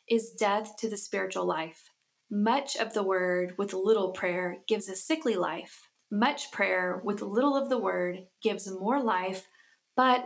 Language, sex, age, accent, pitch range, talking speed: English, female, 20-39, American, 190-230 Hz, 165 wpm